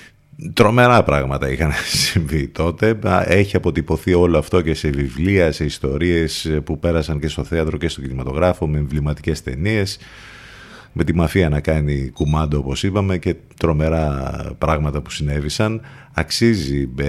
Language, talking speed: Greek, 135 wpm